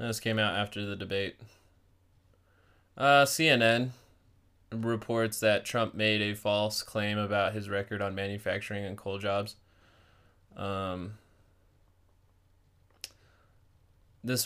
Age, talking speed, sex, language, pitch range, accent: 20-39, 105 wpm, male, English, 100-115 Hz, American